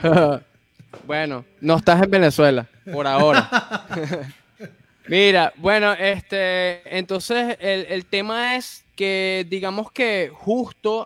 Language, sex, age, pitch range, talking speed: Spanish, male, 20-39, 165-215 Hz, 105 wpm